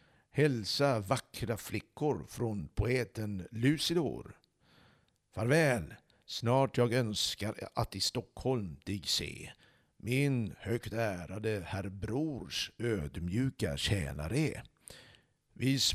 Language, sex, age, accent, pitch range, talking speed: Swedish, male, 60-79, native, 100-130 Hz, 85 wpm